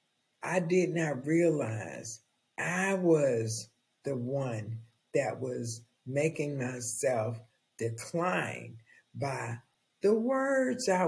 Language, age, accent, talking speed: English, 60-79, American, 90 wpm